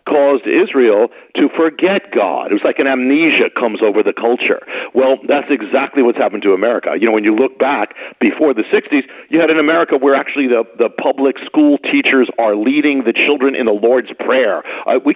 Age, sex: 50-69, male